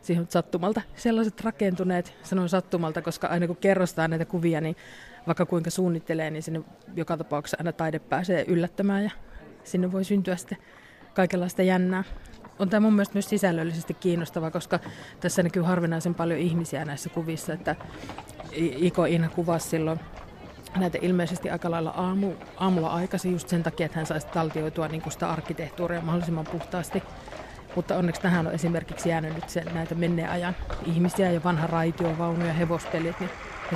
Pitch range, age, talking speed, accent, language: 165-185 Hz, 30-49, 155 wpm, native, Finnish